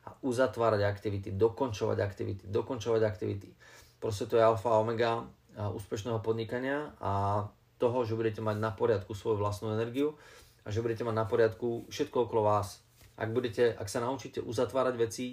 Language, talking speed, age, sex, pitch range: Slovak, 155 wpm, 30-49, male, 110-125 Hz